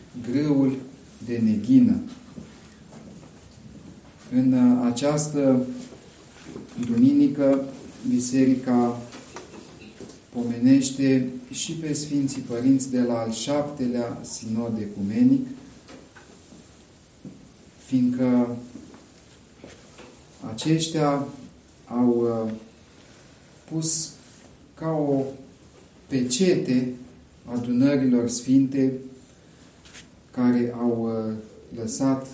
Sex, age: male, 40-59